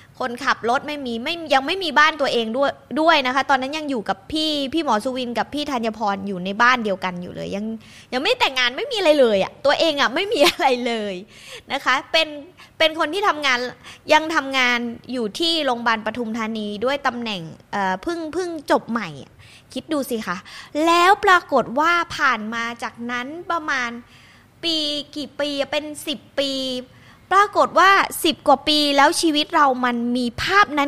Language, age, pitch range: Thai, 20-39, 235-320 Hz